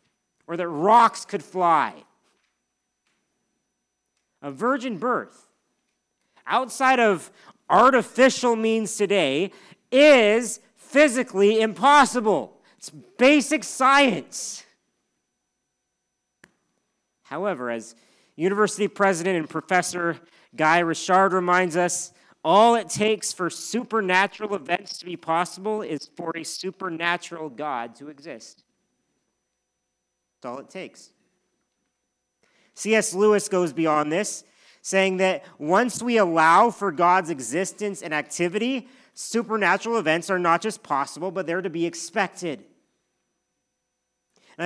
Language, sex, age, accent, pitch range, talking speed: English, male, 40-59, American, 170-215 Hz, 100 wpm